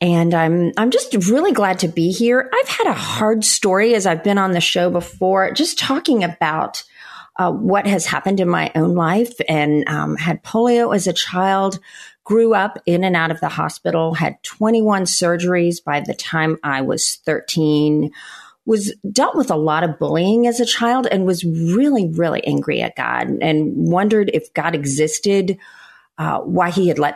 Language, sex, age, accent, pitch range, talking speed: English, female, 40-59, American, 150-200 Hz, 190 wpm